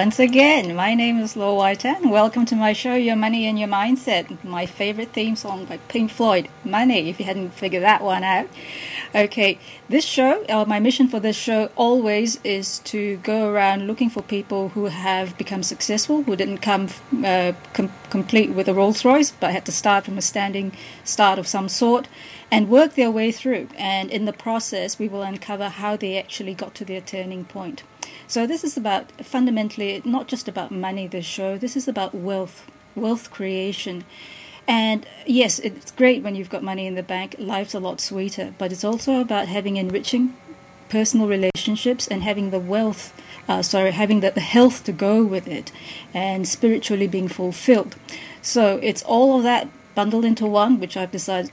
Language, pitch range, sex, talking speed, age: English, 195-230 Hz, female, 185 wpm, 30-49